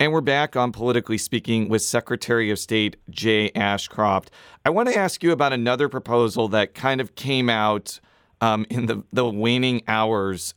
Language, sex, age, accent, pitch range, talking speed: English, male, 40-59, American, 105-125 Hz, 175 wpm